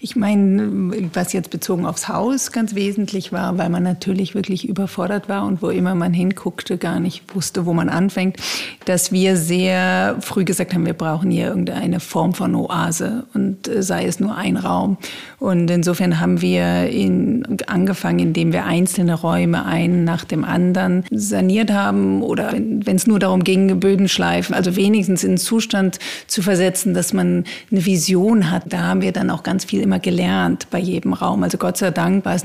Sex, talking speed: female, 185 wpm